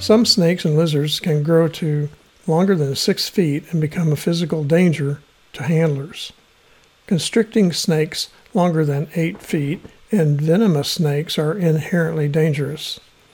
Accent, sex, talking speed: American, male, 135 wpm